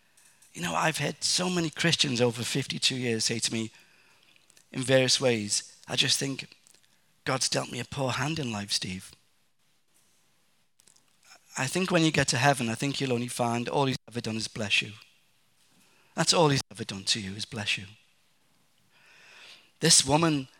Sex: male